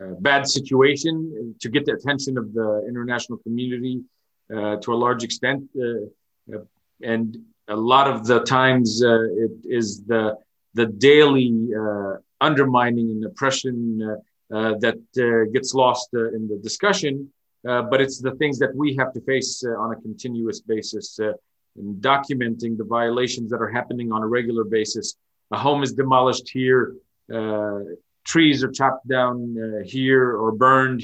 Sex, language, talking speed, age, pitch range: male, English, 160 wpm, 40-59, 115-135 Hz